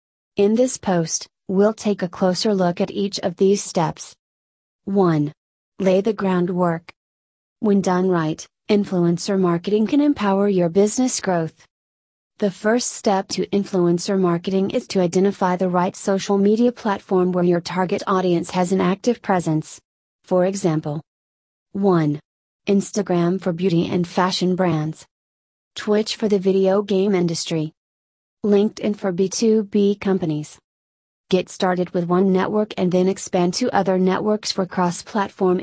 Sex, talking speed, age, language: female, 135 wpm, 30-49, English